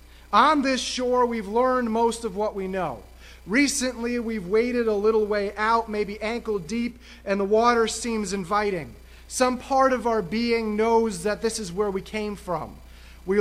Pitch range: 180-235 Hz